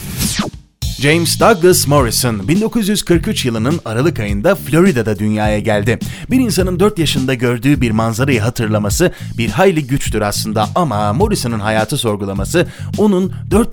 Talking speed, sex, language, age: 120 wpm, male, Turkish, 30-49